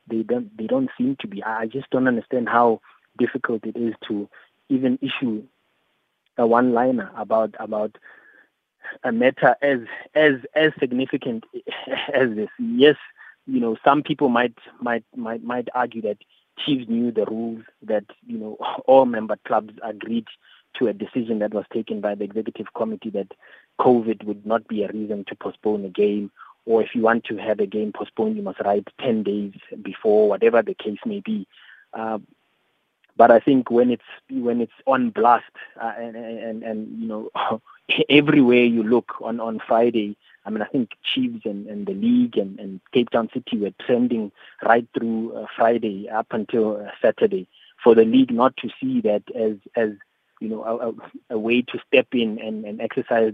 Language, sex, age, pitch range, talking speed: English, male, 30-49, 110-140 Hz, 180 wpm